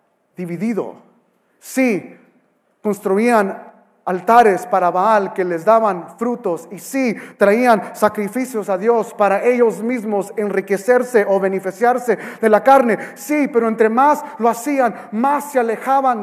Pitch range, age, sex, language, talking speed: 200-245 Hz, 30-49, male, English, 125 wpm